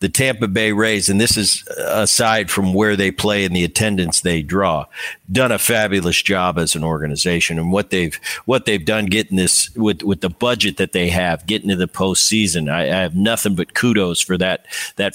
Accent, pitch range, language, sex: American, 90-115 Hz, English, male